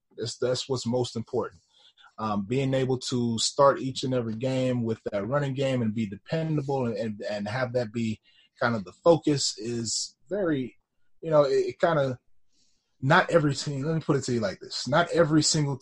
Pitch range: 115-140 Hz